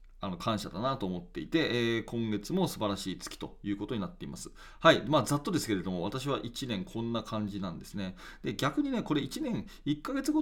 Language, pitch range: Japanese, 110-185 Hz